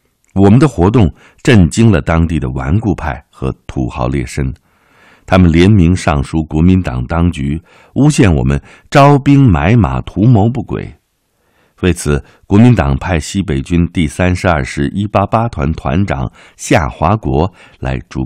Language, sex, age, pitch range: Chinese, male, 60-79, 70-95 Hz